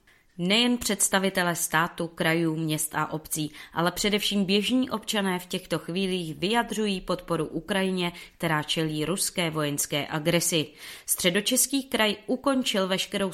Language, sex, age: Czech, female, 30-49